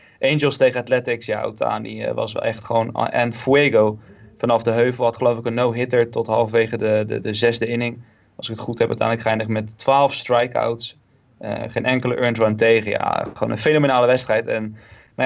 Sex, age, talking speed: male, 20-39, 195 wpm